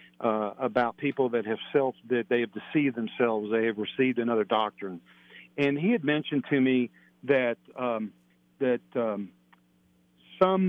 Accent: American